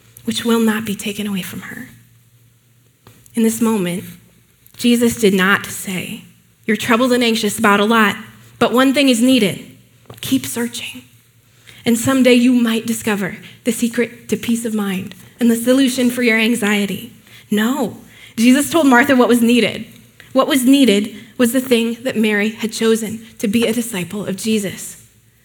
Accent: American